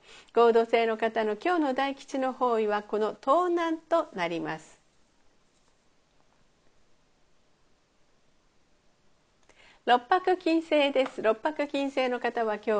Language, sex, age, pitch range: Japanese, female, 50-69, 205-280 Hz